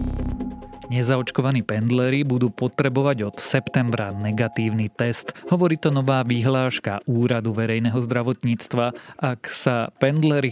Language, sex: Slovak, male